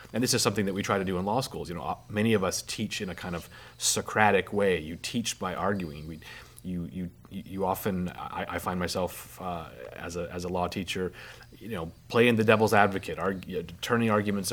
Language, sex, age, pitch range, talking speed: English, male, 30-49, 90-115 Hz, 220 wpm